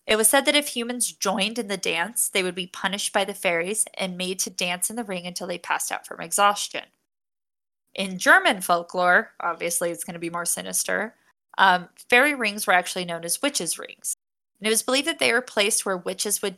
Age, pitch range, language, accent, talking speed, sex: 20-39, 180-215 Hz, English, American, 215 wpm, female